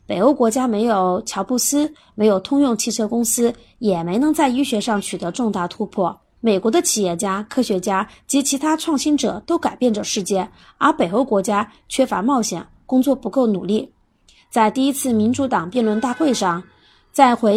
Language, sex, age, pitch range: Chinese, female, 30-49, 200-280 Hz